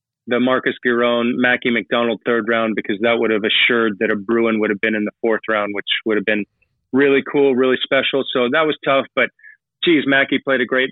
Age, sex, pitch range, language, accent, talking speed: 30-49, male, 120-135 Hz, English, American, 220 wpm